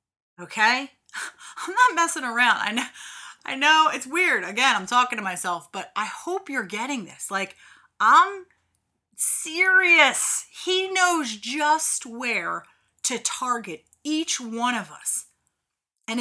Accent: American